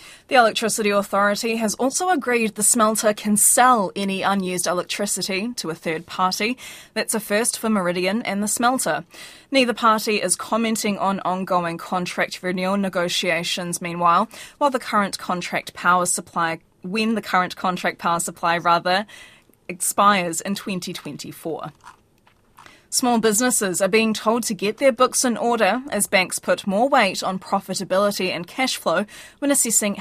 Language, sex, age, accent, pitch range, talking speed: English, female, 20-39, Australian, 185-230 Hz, 150 wpm